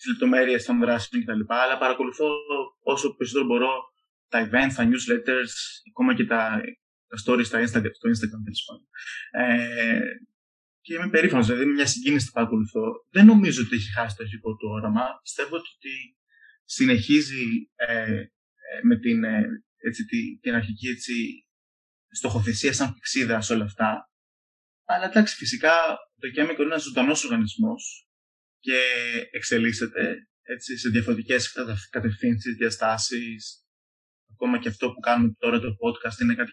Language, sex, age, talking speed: Greek, male, 20-39, 140 wpm